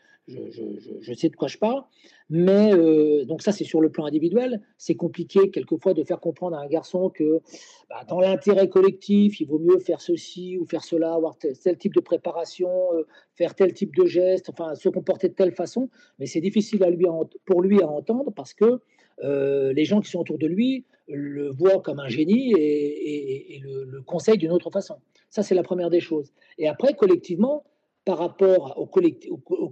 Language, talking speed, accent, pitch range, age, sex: French, 210 wpm, French, 160-215 Hz, 50-69, male